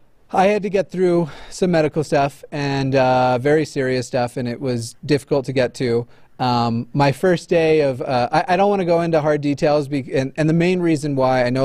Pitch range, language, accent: 125-155 Hz, English, American